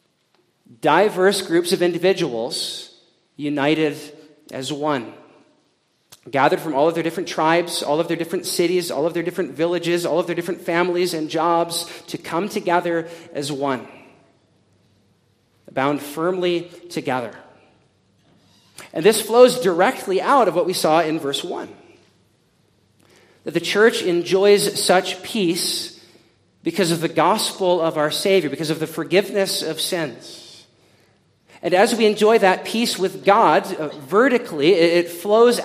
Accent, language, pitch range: American, English, 165-205 Hz